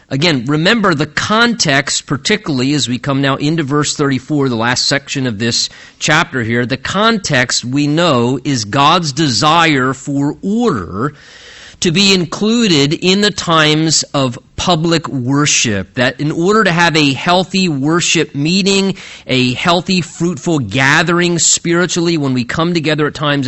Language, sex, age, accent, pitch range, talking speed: English, male, 40-59, American, 135-170 Hz, 145 wpm